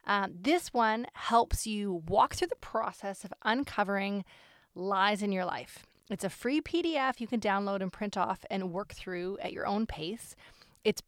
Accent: American